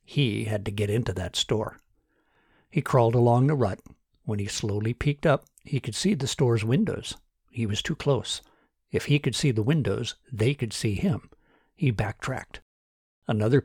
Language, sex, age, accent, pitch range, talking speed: English, male, 60-79, American, 110-140 Hz, 175 wpm